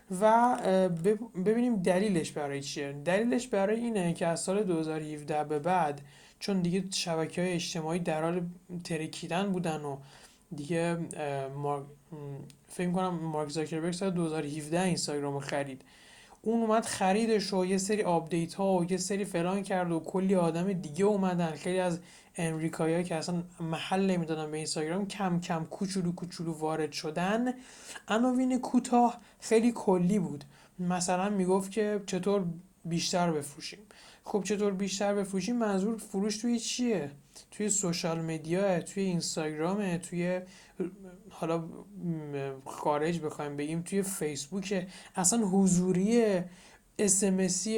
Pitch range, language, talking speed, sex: 165-200 Hz, Persian, 125 wpm, male